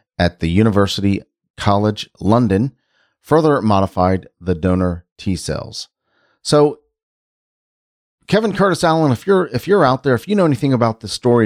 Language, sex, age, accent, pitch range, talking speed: English, male, 40-59, American, 90-125 Hz, 145 wpm